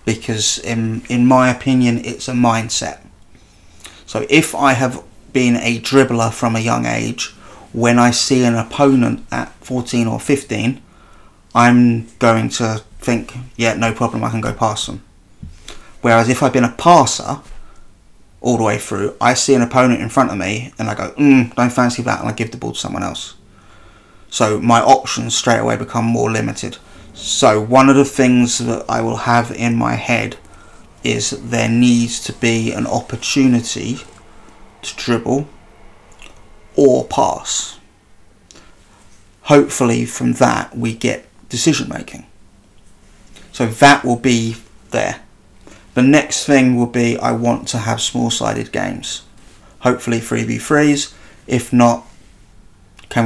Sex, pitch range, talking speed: male, 105-125 Hz, 150 wpm